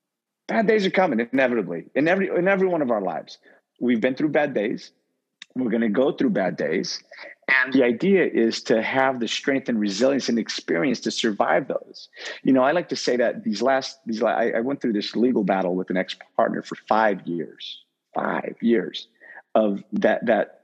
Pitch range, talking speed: 90-120 Hz, 200 wpm